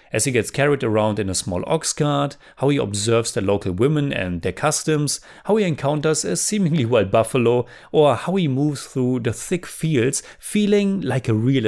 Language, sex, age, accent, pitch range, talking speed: English, male, 30-49, German, 115-160 Hz, 195 wpm